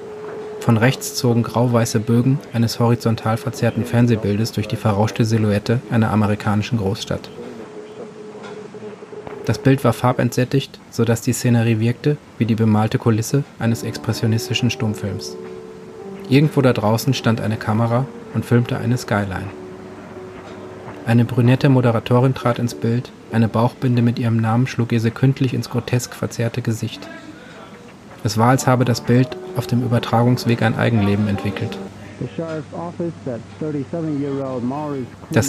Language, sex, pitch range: German, male, 110-130 Hz